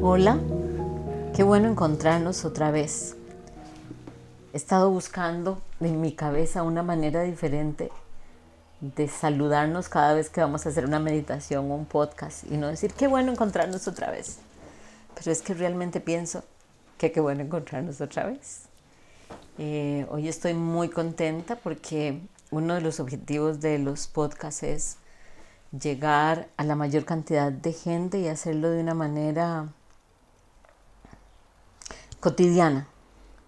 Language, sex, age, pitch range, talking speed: Spanish, female, 40-59, 145-170 Hz, 135 wpm